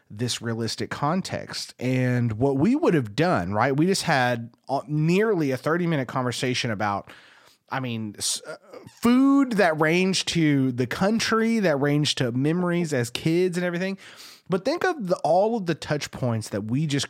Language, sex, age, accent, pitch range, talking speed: English, male, 30-49, American, 115-155 Hz, 165 wpm